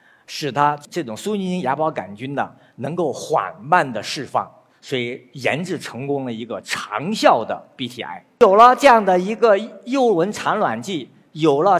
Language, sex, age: Chinese, male, 50-69